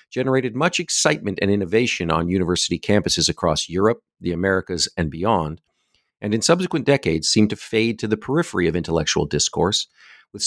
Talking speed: 160 wpm